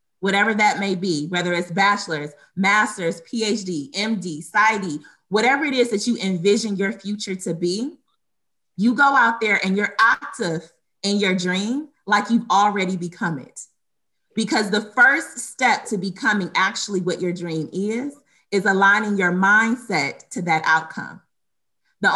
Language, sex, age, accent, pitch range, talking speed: English, female, 30-49, American, 180-220 Hz, 150 wpm